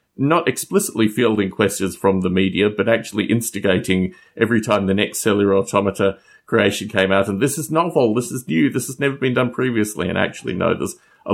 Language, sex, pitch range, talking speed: English, male, 100-125 Hz, 195 wpm